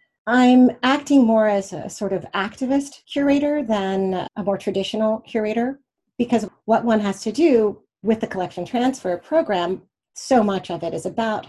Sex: female